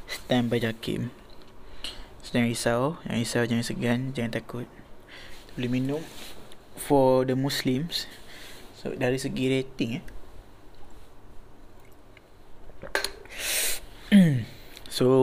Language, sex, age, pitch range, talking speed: Malay, male, 20-39, 115-130 Hz, 90 wpm